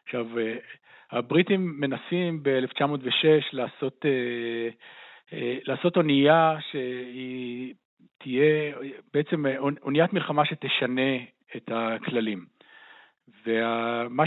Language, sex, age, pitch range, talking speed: Hebrew, male, 50-69, 125-155 Hz, 65 wpm